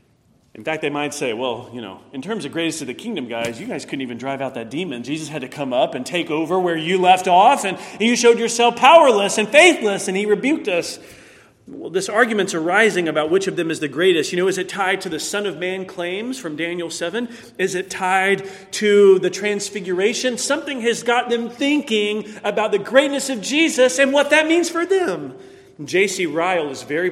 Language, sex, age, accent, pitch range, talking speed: English, male, 40-59, American, 145-210 Hz, 215 wpm